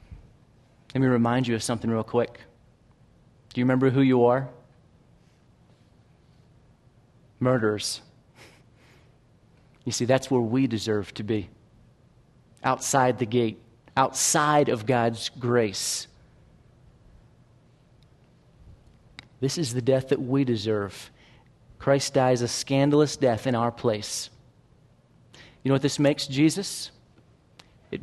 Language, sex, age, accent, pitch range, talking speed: English, male, 40-59, American, 115-135 Hz, 115 wpm